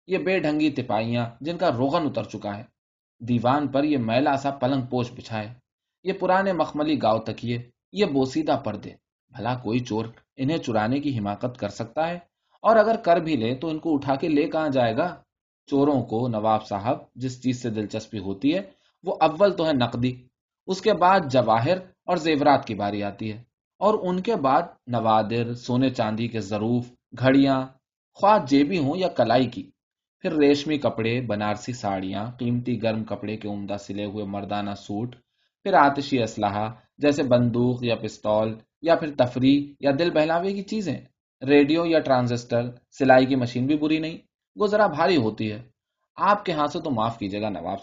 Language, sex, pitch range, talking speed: Urdu, male, 110-150 Hz, 135 wpm